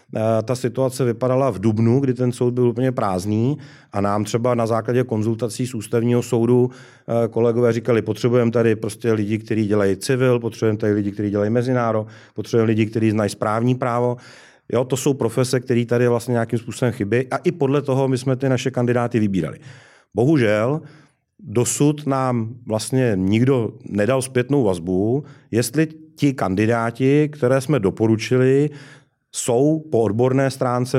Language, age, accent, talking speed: Czech, 40-59, native, 155 wpm